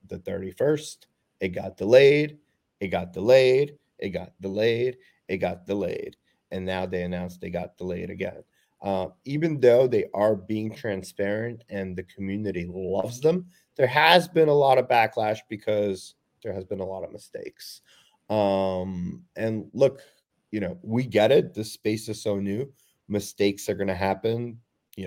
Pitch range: 95-115 Hz